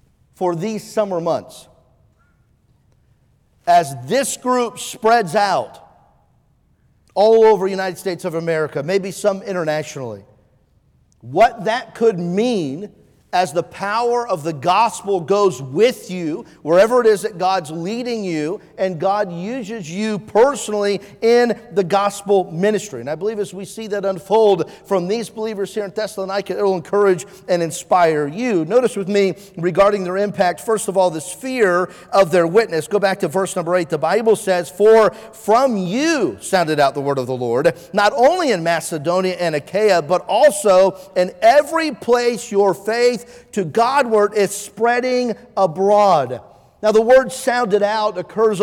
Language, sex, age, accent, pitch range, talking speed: English, male, 50-69, American, 180-220 Hz, 155 wpm